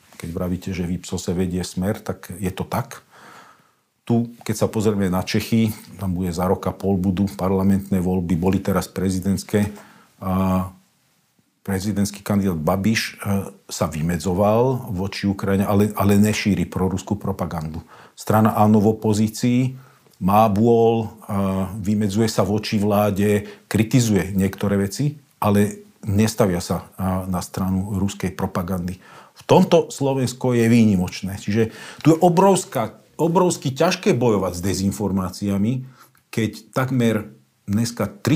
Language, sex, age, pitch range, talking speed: Slovak, male, 40-59, 95-110 Hz, 120 wpm